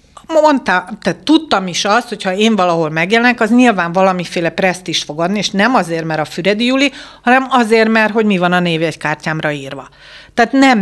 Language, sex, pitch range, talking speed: Hungarian, female, 160-205 Hz, 205 wpm